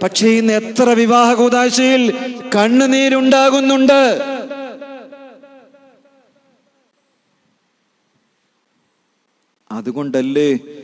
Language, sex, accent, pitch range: Malayalam, male, native, 160-230 Hz